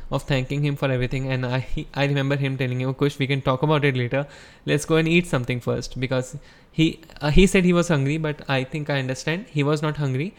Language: English